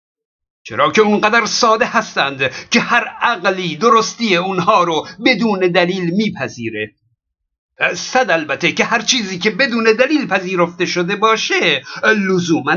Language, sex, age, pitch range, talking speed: Persian, male, 50-69, 170-225 Hz, 120 wpm